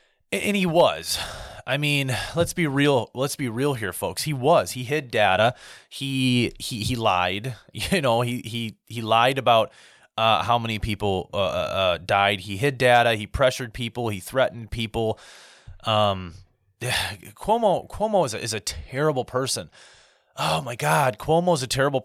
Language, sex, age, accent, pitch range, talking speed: English, male, 30-49, American, 115-145 Hz, 165 wpm